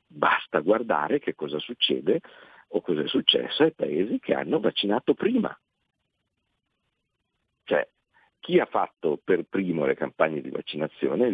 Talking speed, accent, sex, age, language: 130 wpm, native, male, 50-69, Italian